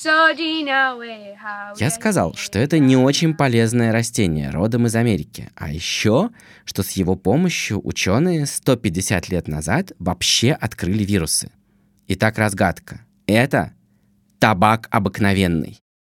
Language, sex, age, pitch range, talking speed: Russian, male, 20-39, 95-125 Hz, 110 wpm